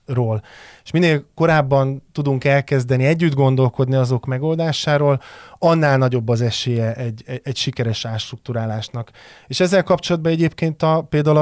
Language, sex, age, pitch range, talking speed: Hungarian, male, 20-39, 125-150 Hz, 120 wpm